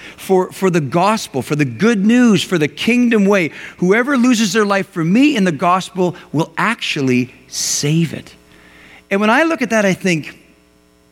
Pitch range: 130-210 Hz